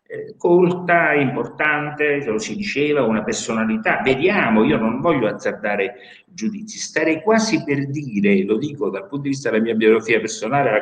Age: 60-79